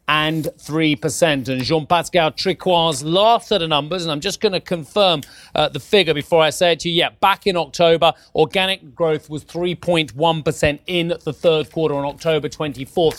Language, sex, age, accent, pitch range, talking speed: English, male, 40-59, British, 150-180 Hz, 175 wpm